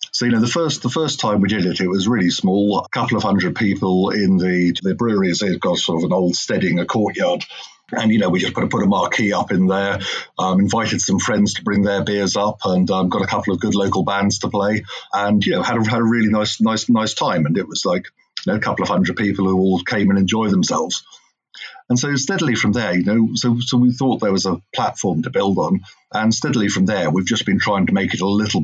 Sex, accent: male, British